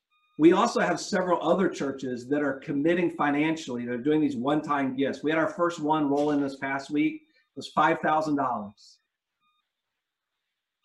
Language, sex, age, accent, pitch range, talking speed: English, male, 50-69, American, 155-255 Hz, 150 wpm